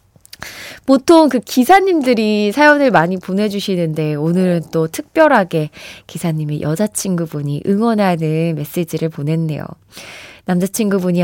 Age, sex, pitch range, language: 20-39, female, 170-275 Hz, Korean